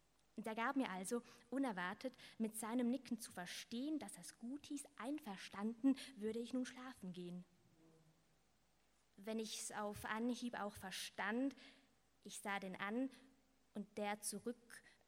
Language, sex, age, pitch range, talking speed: German, female, 20-39, 195-245 Hz, 140 wpm